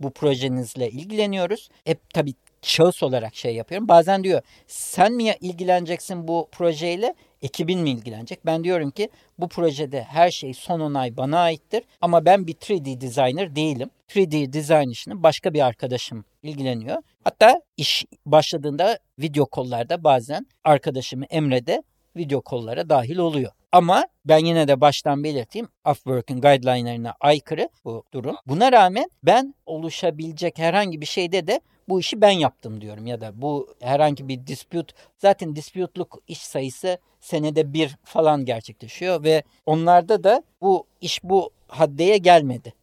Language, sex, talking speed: Turkish, male, 145 wpm